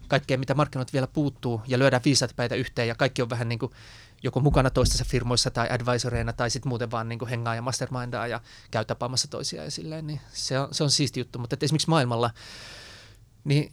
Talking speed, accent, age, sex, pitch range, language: 195 wpm, native, 20-39, male, 115-140 Hz, Finnish